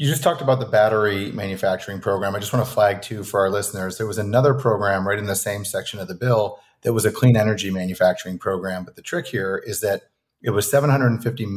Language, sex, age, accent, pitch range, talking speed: English, male, 30-49, American, 100-130 Hz, 235 wpm